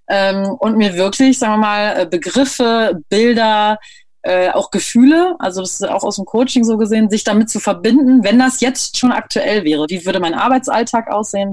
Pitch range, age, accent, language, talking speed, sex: 175-240 Hz, 30-49, German, German, 180 wpm, female